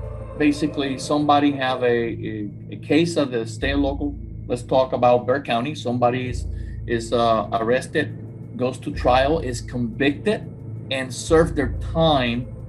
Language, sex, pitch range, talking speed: English, male, 110-145 Hz, 140 wpm